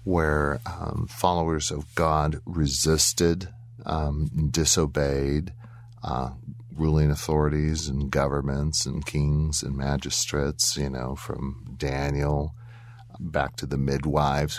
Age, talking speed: 40-59, 105 wpm